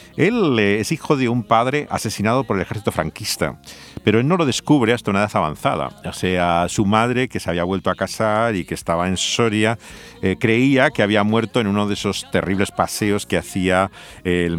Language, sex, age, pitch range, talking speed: Spanish, male, 50-69, 95-110 Hz, 200 wpm